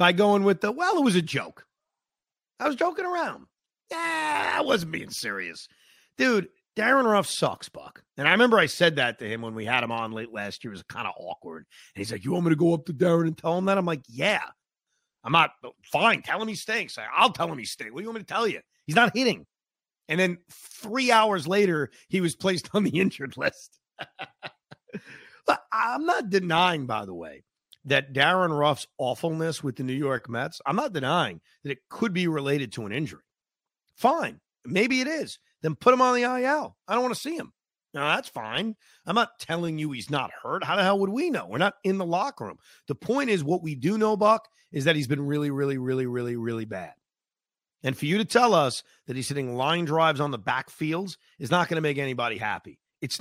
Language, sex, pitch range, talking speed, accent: English, male, 140-215 Hz, 230 wpm, American